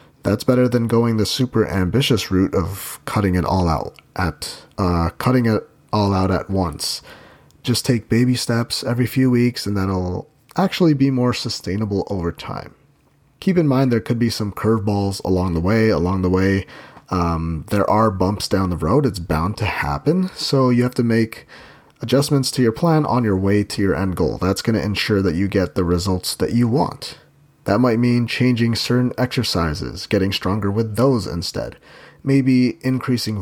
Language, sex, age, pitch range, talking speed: English, male, 30-49, 95-125 Hz, 185 wpm